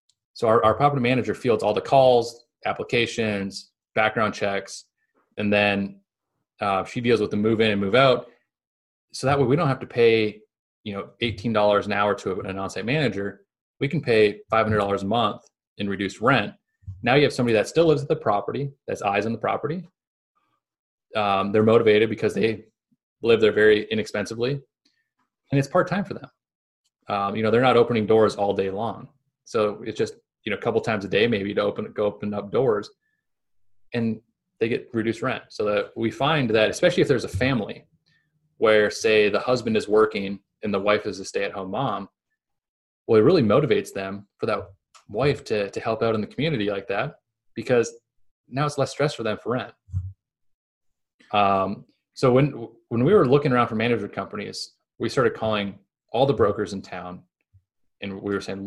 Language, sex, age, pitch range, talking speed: English, male, 20-39, 100-125 Hz, 195 wpm